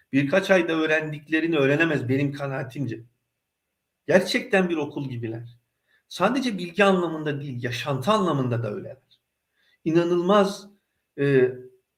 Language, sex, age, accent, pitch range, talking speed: Turkish, male, 50-69, native, 130-175 Hz, 100 wpm